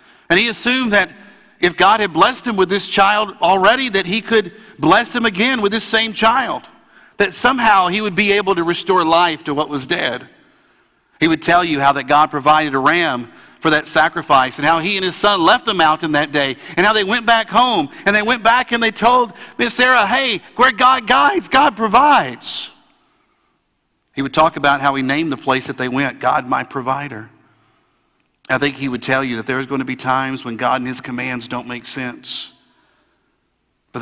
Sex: male